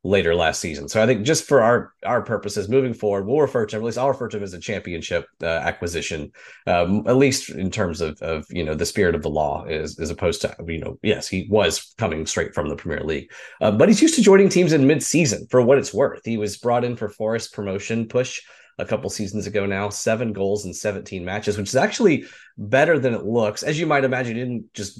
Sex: male